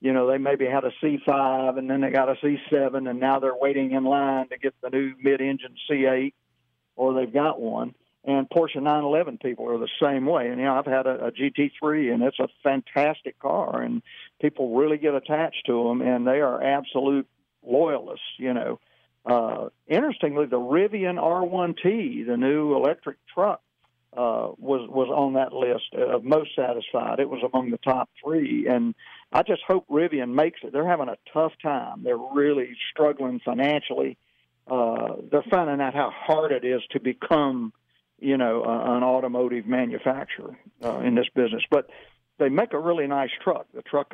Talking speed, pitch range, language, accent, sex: 180 wpm, 125-150 Hz, English, American, male